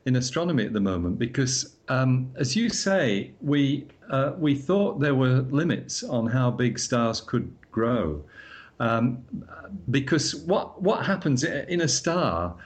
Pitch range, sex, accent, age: 110-135 Hz, male, British, 50-69